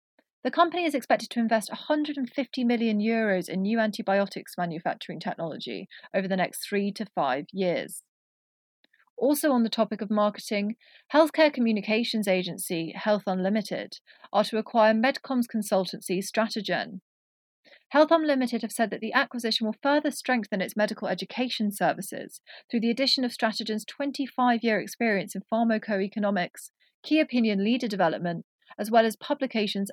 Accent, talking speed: British, 140 wpm